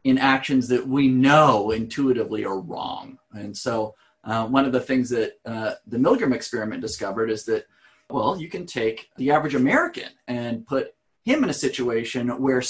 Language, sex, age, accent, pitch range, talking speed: English, male, 30-49, American, 115-140 Hz, 175 wpm